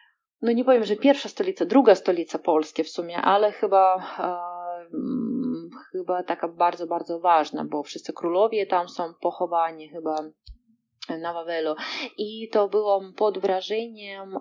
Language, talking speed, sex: Polish, 135 wpm, female